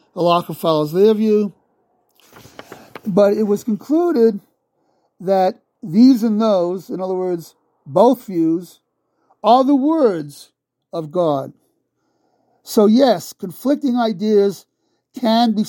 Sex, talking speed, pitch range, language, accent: male, 110 wpm, 170-215 Hz, English, American